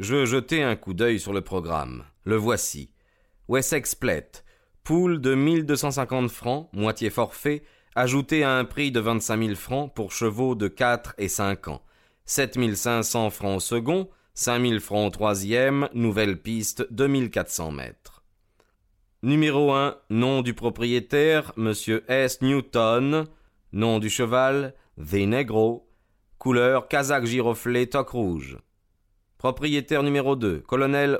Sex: male